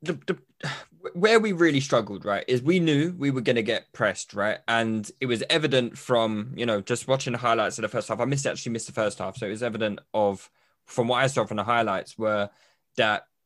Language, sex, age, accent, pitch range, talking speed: English, male, 20-39, British, 125-170 Hz, 235 wpm